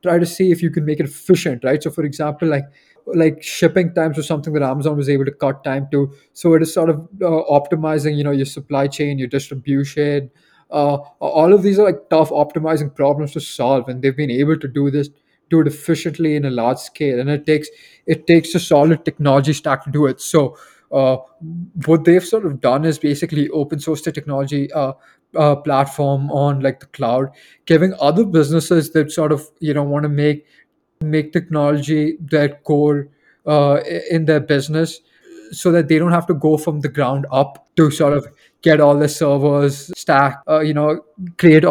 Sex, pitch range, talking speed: male, 140-160 Hz, 200 wpm